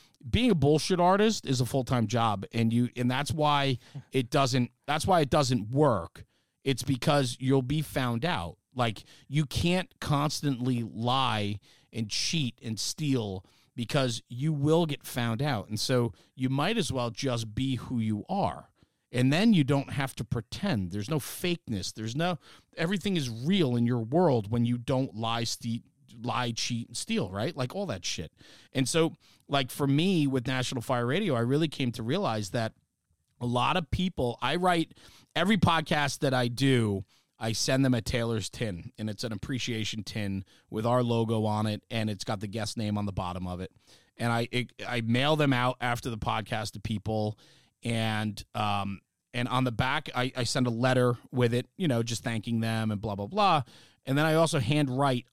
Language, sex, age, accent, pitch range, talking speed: English, male, 40-59, American, 115-140 Hz, 190 wpm